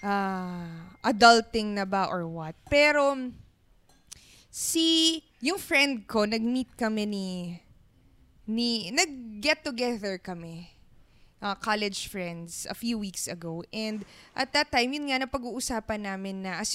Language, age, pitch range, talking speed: Filipino, 20-39, 205-290 Hz, 125 wpm